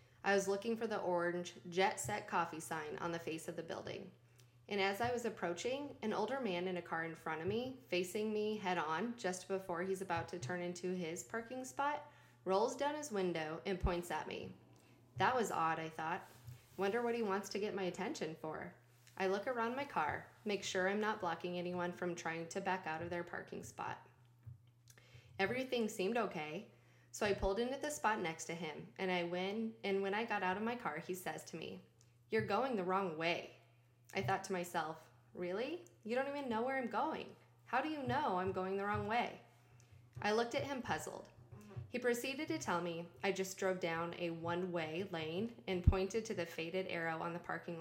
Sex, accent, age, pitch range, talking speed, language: female, American, 20-39, 160-210 Hz, 210 wpm, English